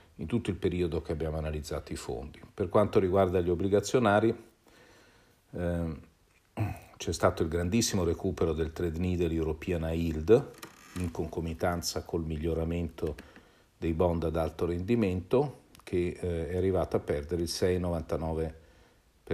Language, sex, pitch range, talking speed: Italian, male, 80-95 Hz, 125 wpm